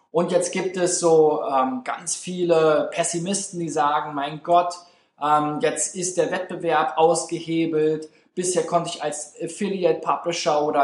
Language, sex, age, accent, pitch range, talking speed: German, male, 20-39, German, 155-185 Hz, 140 wpm